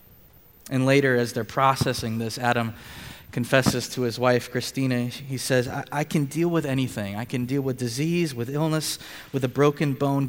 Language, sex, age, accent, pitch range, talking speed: English, male, 20-39, American, 115-145 Hz, 180 wpm